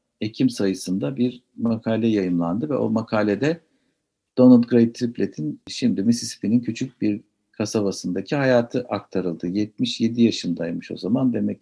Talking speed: 120 wpm